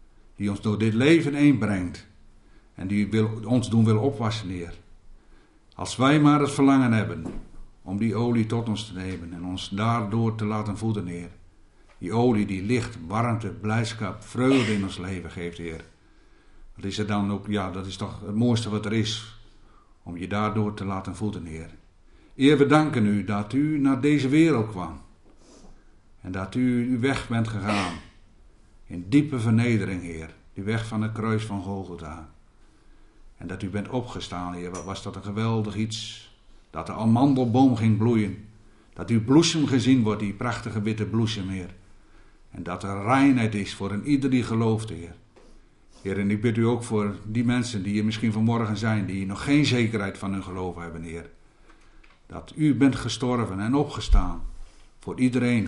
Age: 60-79